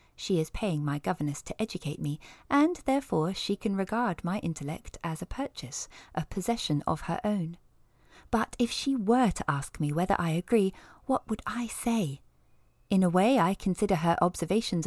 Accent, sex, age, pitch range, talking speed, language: British, female, 30-49, 160-215 Hz, 180 wpm, English